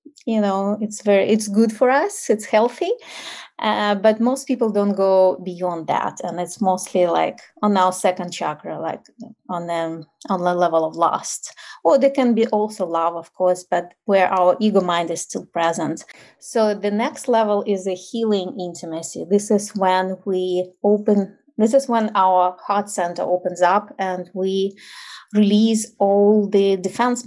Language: English